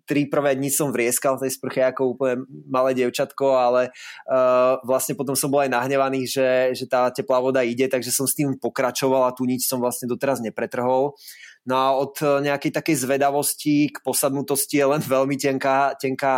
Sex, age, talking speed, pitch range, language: male, 20-39, 185 wpm, 120-140 Hz, Slovak